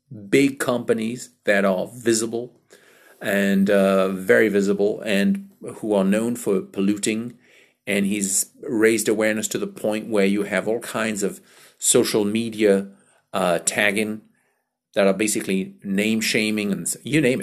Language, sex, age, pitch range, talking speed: English, male, 50-69, 100-120 Hz, 140 wpm